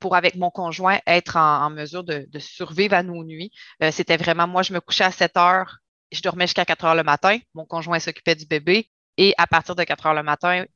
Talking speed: 245 wpm